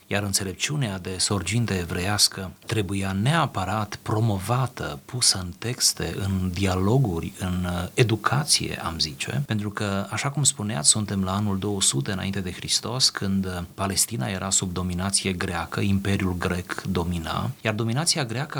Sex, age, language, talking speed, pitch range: male, 30-49, Romanian, 130 wpm, 95-115 Hz